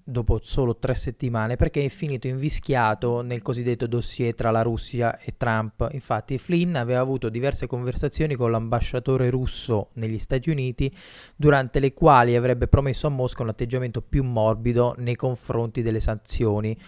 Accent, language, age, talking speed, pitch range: native, Italian, 20-39, 155 wpm, 115-140 Hz